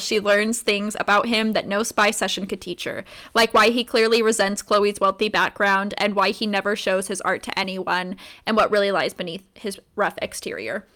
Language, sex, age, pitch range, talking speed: English, female, 10-29, 205-245 Hz, 205 wpm